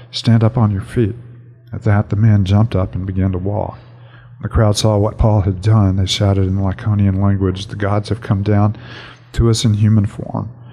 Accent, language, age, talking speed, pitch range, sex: American, English, 50-69, 215 wpm, 105-115 Hz, male